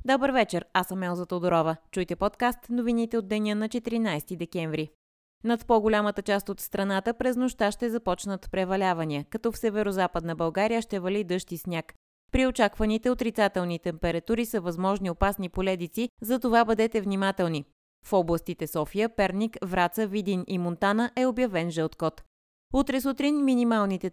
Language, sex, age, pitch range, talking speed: Bulgarian, female, 20-39, 170-225 Hz, 145 wpm